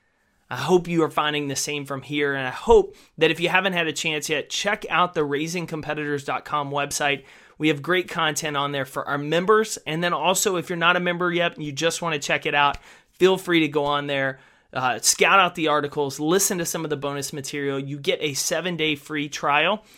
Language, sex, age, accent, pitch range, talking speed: English, male, 30-49, American, 140-175 Hz, 225 wpm